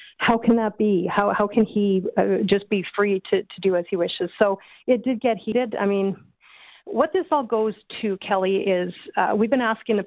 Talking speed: 220 wpm